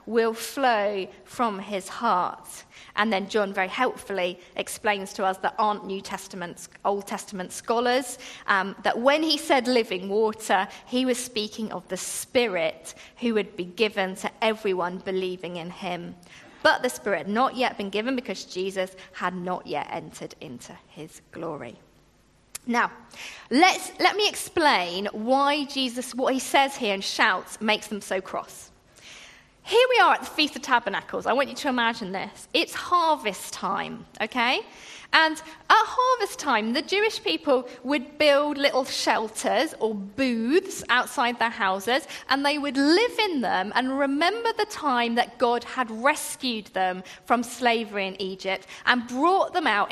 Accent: British